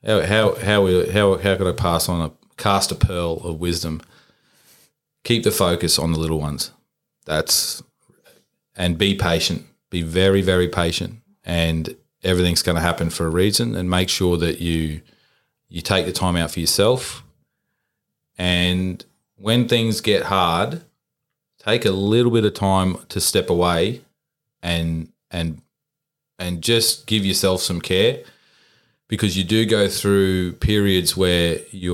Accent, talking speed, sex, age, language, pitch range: Australian, 145 wpm, male, 30-49, English, 85-95 Hz